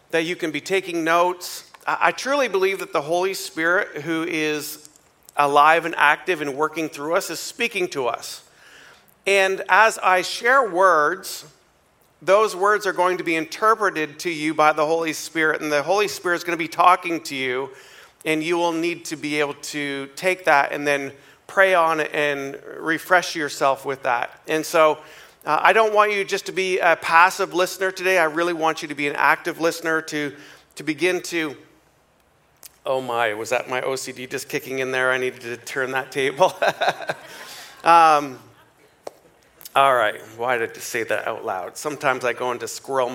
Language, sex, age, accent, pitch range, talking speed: English, male, 40-59, American, 145-180 Hz, 185 wpm